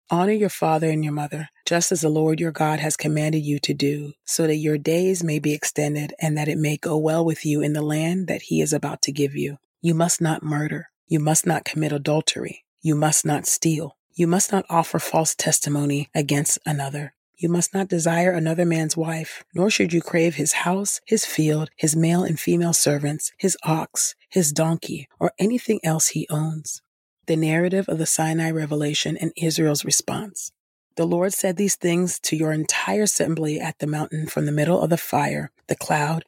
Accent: American